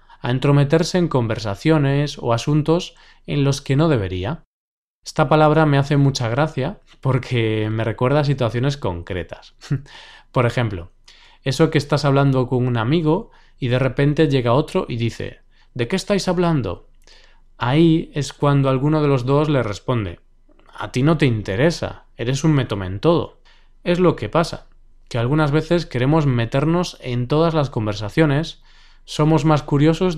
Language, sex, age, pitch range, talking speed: Spanish, male, 20-39, 120-155 Hz, 150 wpm